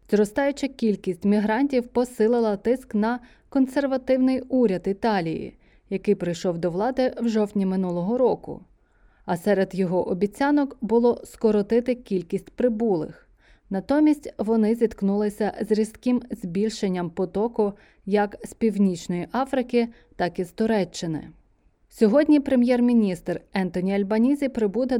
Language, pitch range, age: Ukrainian, 185-245 Hz, 20-39